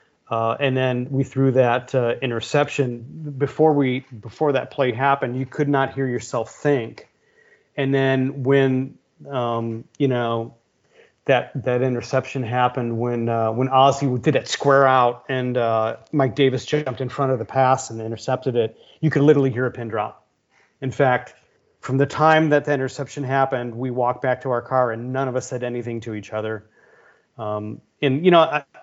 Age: 40-59